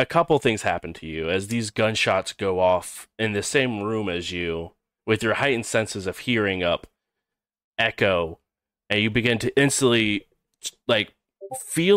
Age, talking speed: 30-49, 160 wpm